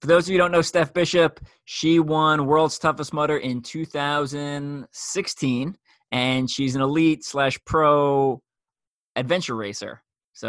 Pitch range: 115-145 Hz